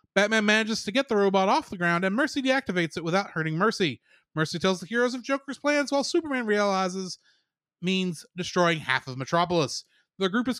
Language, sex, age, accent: English, male, 30-49, American